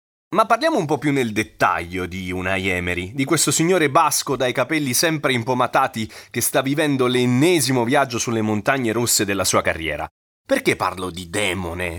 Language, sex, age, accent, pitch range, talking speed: Italian, male, 30-49, native, 100-145 Hz, 165 wpm